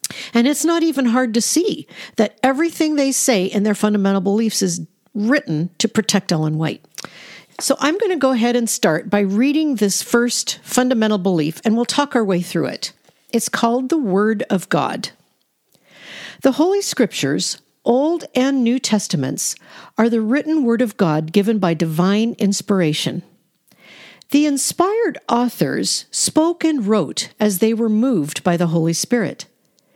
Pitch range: 190-260 Hz